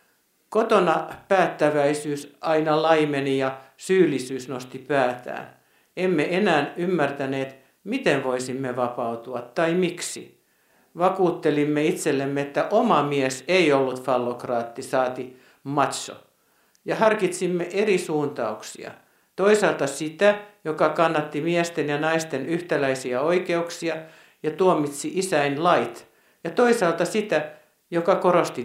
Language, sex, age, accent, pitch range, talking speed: Finnish, male, 60-79, native, 140-185 Hz, 100 wpm